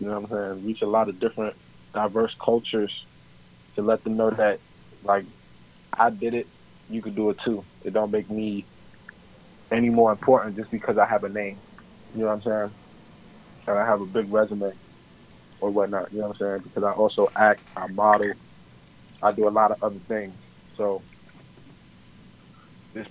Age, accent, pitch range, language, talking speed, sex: 20-39, American, 95-110 Hz, English, 185 wpm, male